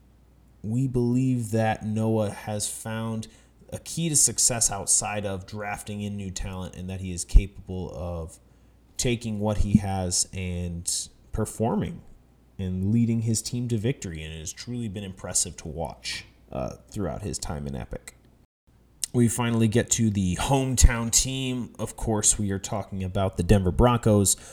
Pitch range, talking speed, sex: 95-115 Hz, 155 wpm, male